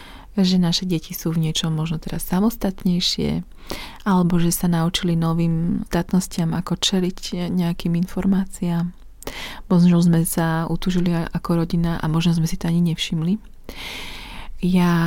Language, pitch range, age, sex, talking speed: Slovak, 170-190 Hz, 30-49, female, 130 wpm